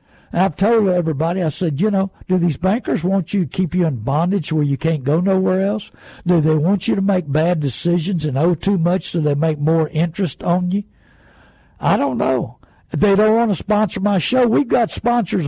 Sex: male